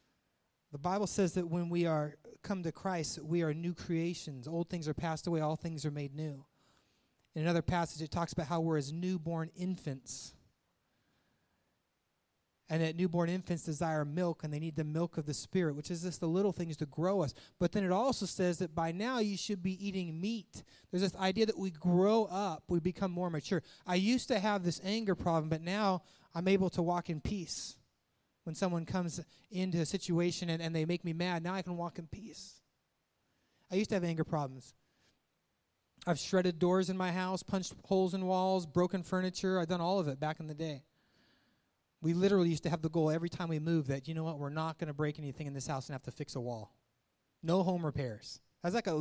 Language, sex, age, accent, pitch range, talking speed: English, male, 30-49, American, 155-185 Hz, 215 wpm